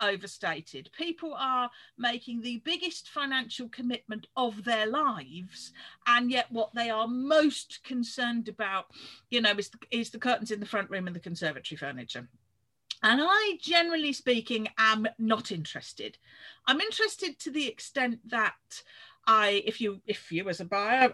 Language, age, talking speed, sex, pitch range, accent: English, 40-59, 150 wpm, female, 215-285 Hz, British